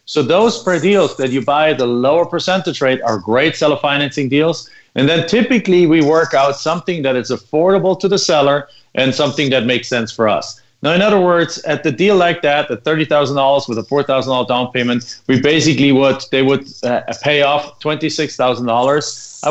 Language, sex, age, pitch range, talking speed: English, male, 40-59, 130-165 Hz, 190 wpm